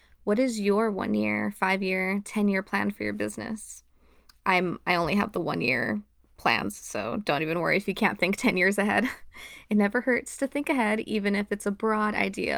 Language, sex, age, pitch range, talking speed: English, female, 20-39, 200-245 Hz, 195 wpm